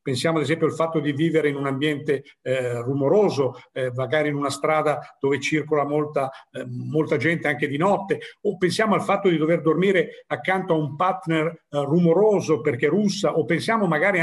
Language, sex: Italian, male